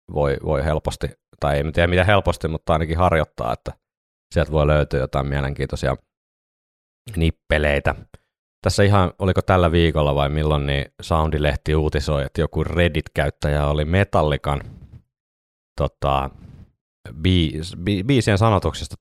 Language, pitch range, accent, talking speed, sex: Finnish, 75-90 Hz, native, 115 wpm, male